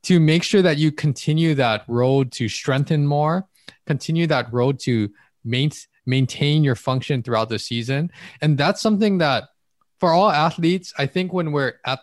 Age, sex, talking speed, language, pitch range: 20-39, male, 165 wpm, English, 115-160 Hz